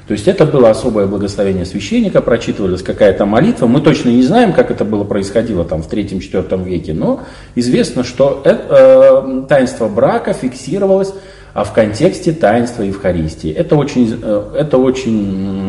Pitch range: 100-145 Hz